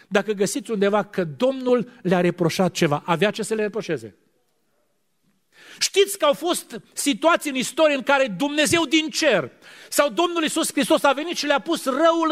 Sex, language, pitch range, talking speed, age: male, Romanian, 180-275 Hz, 170 wpm, 40-59